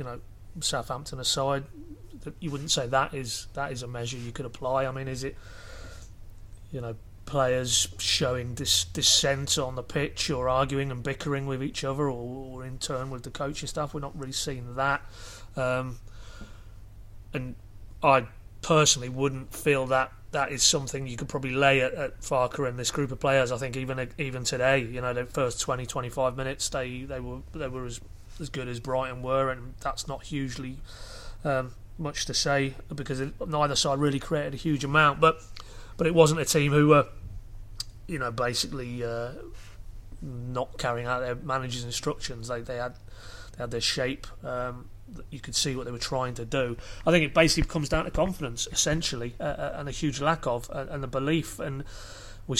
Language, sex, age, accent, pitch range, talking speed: English, male, 30-49, British, 115-140 Hz, 190 wpm